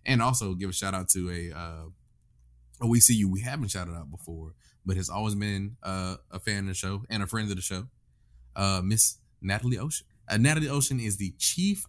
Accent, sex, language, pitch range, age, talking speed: American, male, English, 90-115 Hz, 20-39, 210 wpm